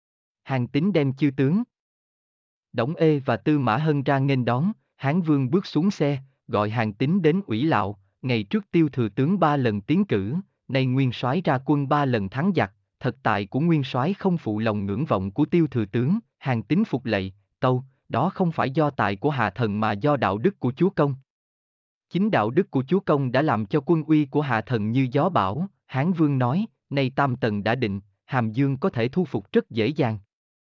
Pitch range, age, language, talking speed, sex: 115-155 Hz, 20-39, Vietnamese, 215 wpm, male